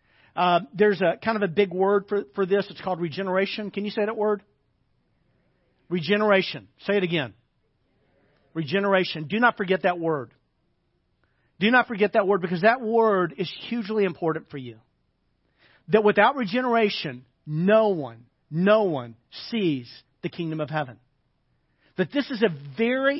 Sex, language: male, English